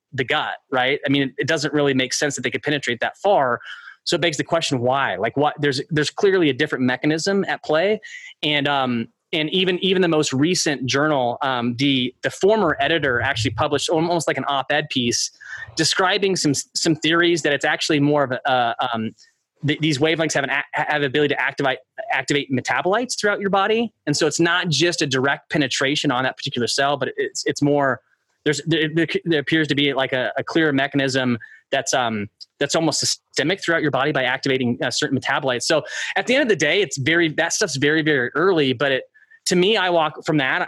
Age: 20-39